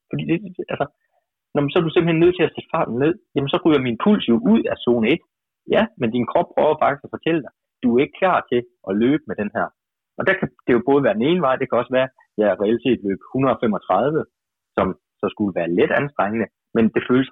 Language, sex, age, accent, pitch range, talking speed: Danish, male, 30-49, native, 110-155 Hz, 255 wpm